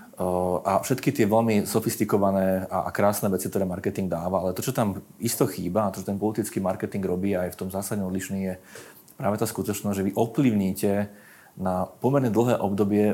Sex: male